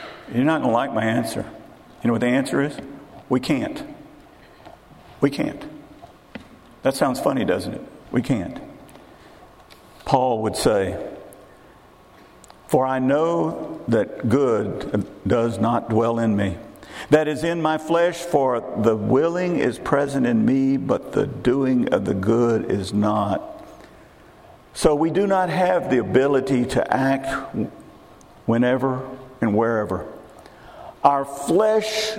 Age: 50-69